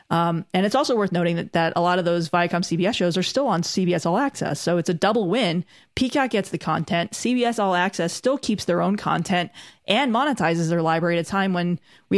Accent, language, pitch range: American, English, 170-205 Hz